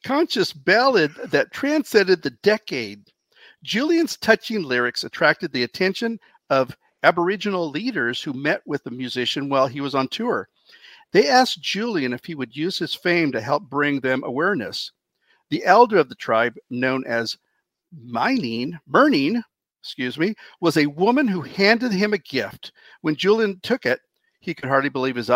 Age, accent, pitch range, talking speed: 50-69, American, 130-210 Hz, 160 wpm